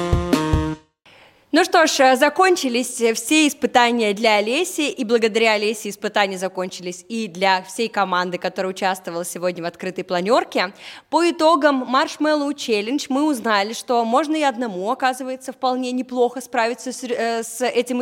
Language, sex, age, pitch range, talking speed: Russian, female, 20-39, 210-265 Hz, 135 wpm